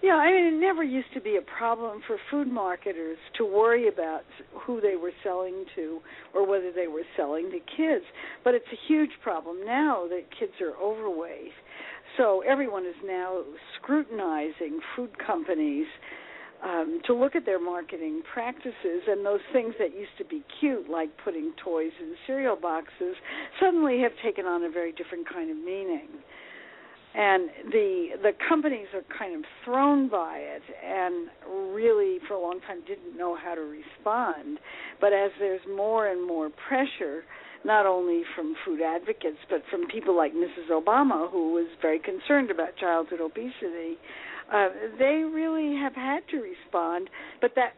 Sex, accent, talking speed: female, American, 165 wpm